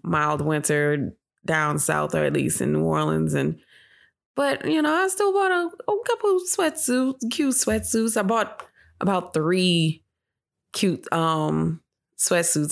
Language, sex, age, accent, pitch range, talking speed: English, female, 20-39, American, 155-200 Hz, 145 wpm